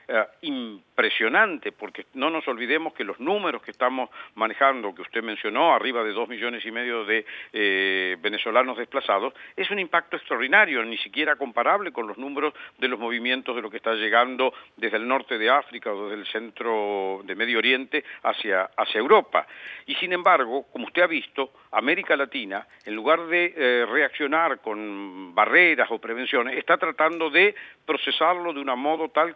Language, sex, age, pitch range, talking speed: Spanish, male, 50-69, 115-165 Hz, 170 wpm